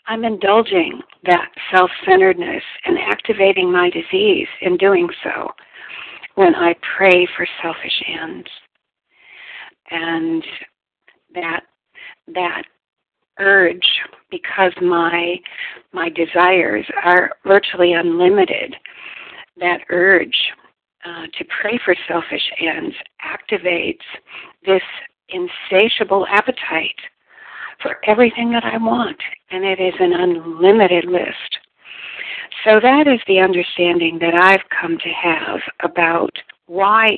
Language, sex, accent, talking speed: English, female, American, 100 wpm